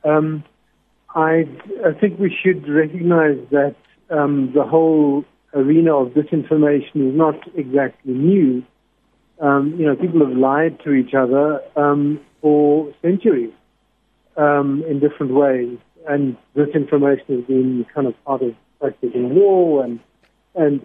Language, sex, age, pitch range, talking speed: English, male, 50-69, 135-160 Hz, 130 wpm